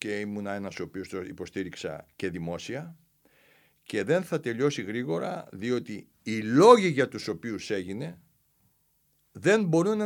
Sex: male